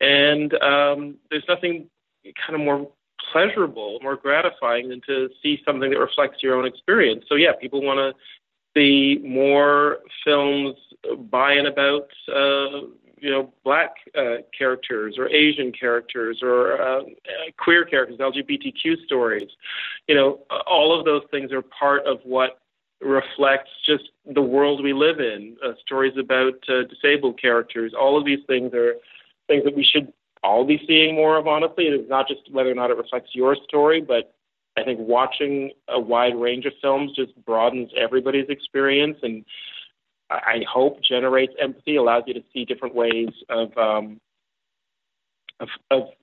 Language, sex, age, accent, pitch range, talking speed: English, male, 40-59, American, 125-145 Hz, 155 wpm